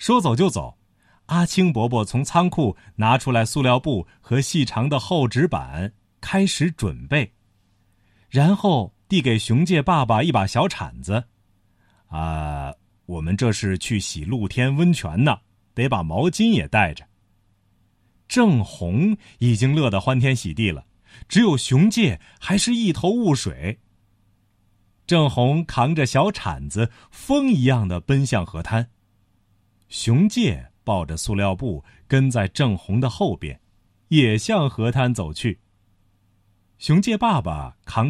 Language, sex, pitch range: Chinese, male, 100-145 Hz